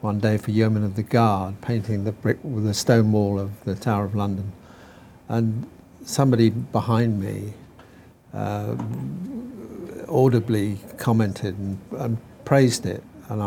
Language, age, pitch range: English, 50-69, 100-120 Hz